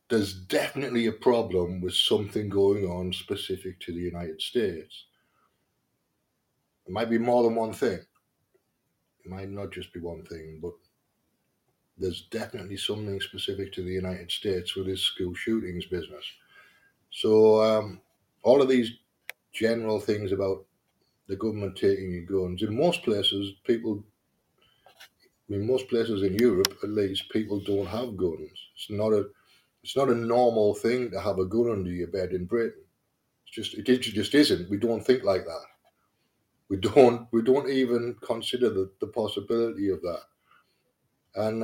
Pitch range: 95-115 Hz